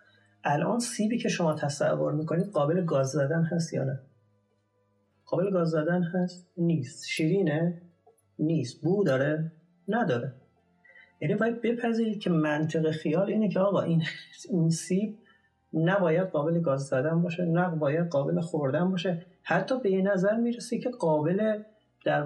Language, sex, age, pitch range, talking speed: Persian, male, 40-59, 140-185 Hz, 135 wpm